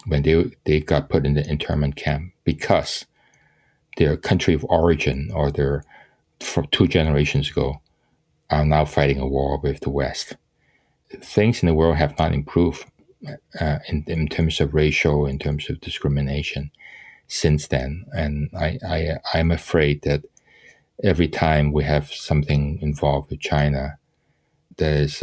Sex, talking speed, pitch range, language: male, 150 wpm, 75-85 Hz, English